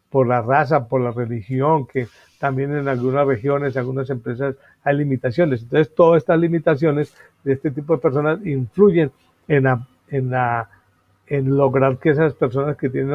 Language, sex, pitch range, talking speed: Spanish, male, 130-145 Hz, 170 wpm